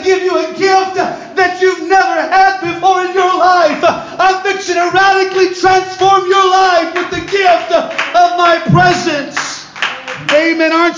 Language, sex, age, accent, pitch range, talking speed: English, male, 50-69, American, 285-350 Hz, 150 wpm